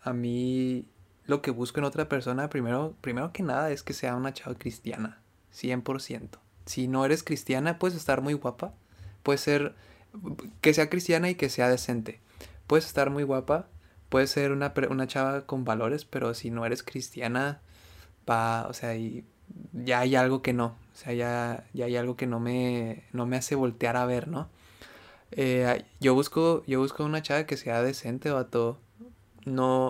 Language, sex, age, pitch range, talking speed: Spanish, male, 20-39, 115-140 Hz, 185 wpm